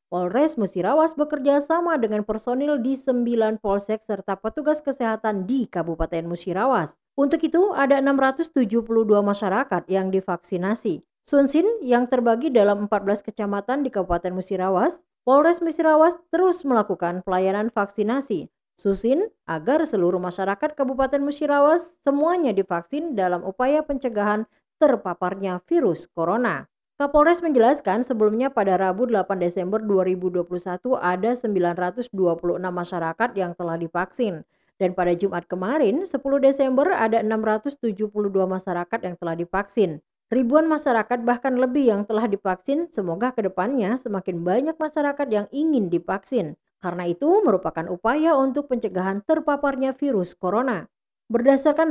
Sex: female